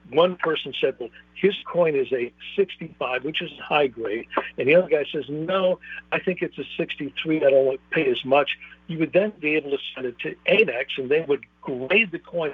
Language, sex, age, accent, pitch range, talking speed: English, male, 60-79, American, 130-200 Hz, 230 wpm